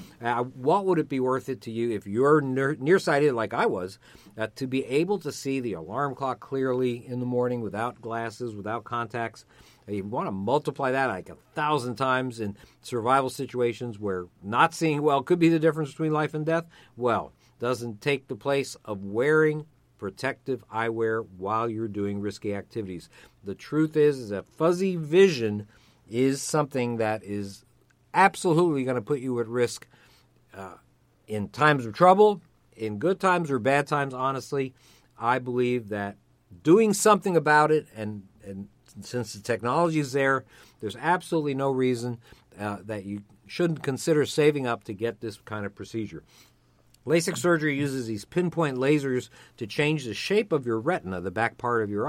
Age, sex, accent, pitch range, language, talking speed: 50-69, male, American, 110-150 Hz, English, 170 wpm